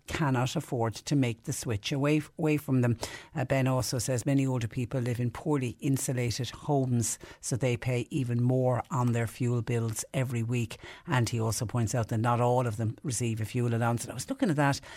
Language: English